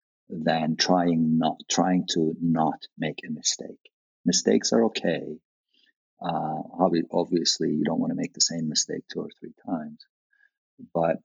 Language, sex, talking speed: English, male, 145 wpm